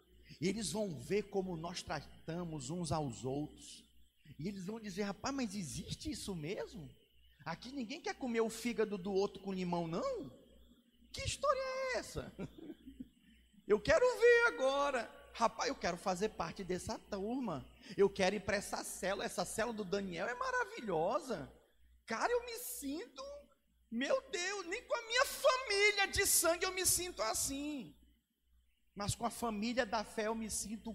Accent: Brazilian